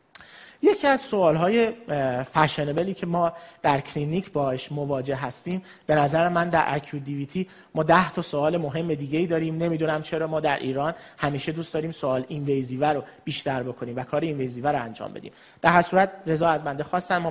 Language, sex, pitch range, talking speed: Persian, male, 145-195 Hz, 180 wpm